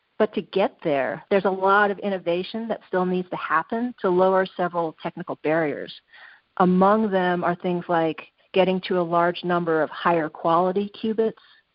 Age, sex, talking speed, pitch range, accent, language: 40-59, female, 170 wpm, 180-210 Hz, American, English